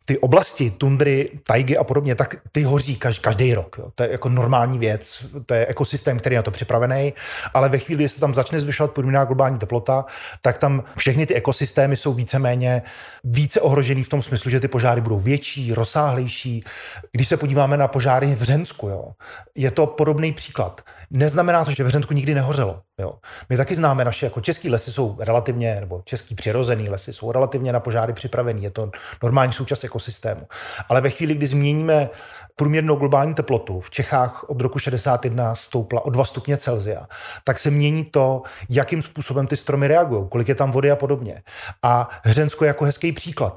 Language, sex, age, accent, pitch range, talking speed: Czech, male, 30-49, native, 120-145 Hz, 185 wpm